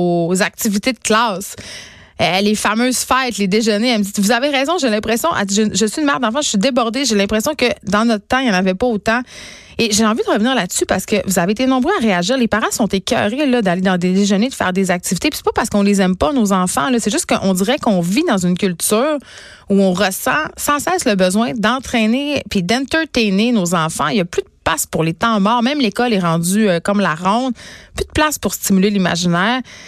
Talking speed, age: 245 wpm, 30-49